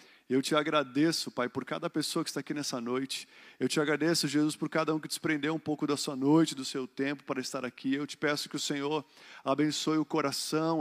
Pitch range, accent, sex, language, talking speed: 135-155 Hz, Brazilian, male, Portuguese, 230 wpm